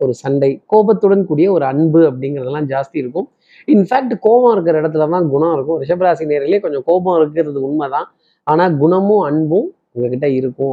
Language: Tamil